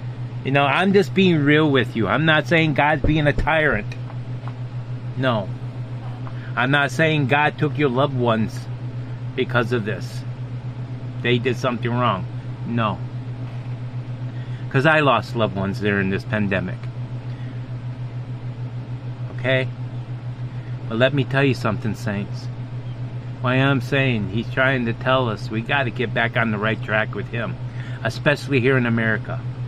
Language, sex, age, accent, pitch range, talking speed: English, male, 30-49, American, 120-125 Hz, 145 wpm